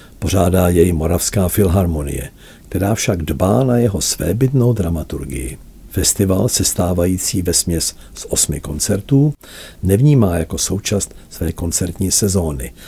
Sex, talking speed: male, 110 wpm